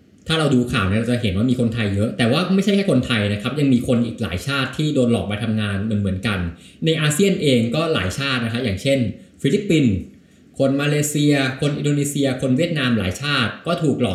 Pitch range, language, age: 105-140 Hz, Thai, 20-39